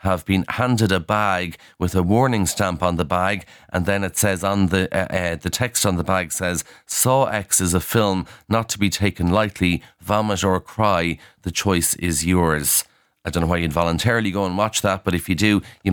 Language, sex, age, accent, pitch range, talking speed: English, male, 30-49, Irish, 90-105 Hz, 220 wpm